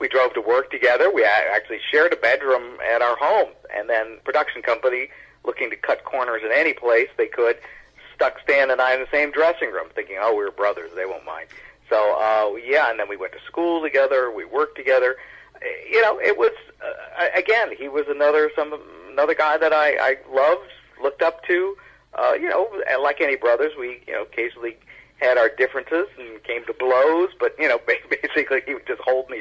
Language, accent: English, American